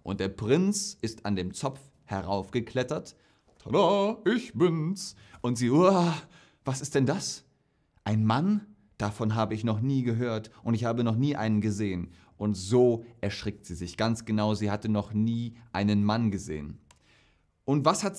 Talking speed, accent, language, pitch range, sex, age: 165 wpm, German, German, 100-135 Hz, male, 30-49